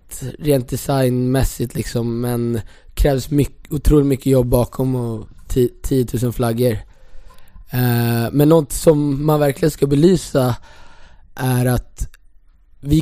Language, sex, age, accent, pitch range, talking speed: English, male, 20-39, Swedish, 120-140 Hz, 120 wpm